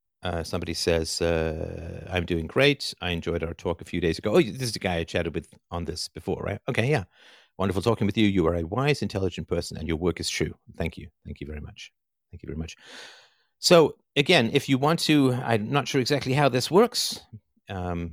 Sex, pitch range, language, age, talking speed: male, 80-110 Hz, English, 50-69, 225 wpm